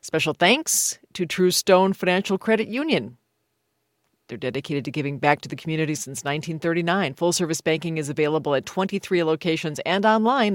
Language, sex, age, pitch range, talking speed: English, female, 40-59, 140-180 Hz, 160 wpm